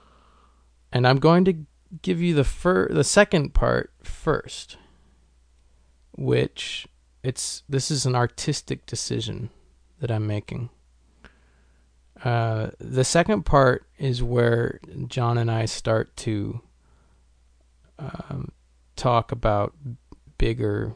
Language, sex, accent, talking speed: English, male, American, 105 wpm